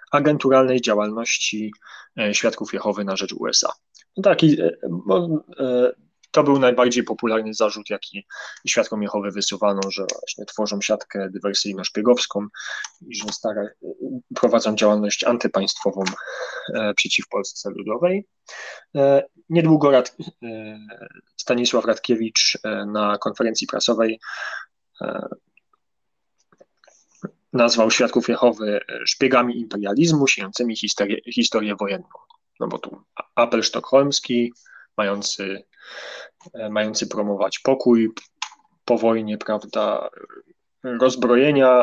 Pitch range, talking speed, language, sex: 105-125 Hz, 90 wpm, Polish, male